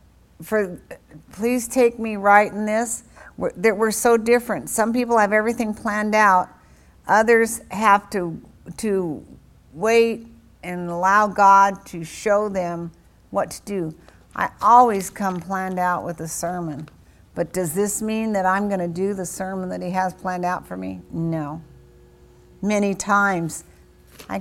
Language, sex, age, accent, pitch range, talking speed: English, female, 60-79, American, 175-220 Hz, 150 wpm